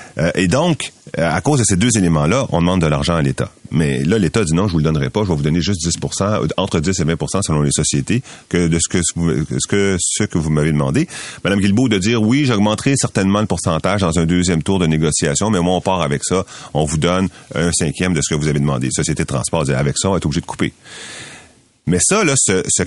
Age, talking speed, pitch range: 30-49, 255 wpm, 85-105 Hz